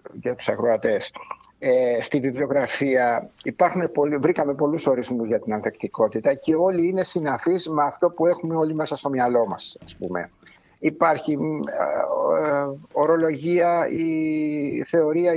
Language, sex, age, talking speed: Greek, male, 60-79, 125 wpm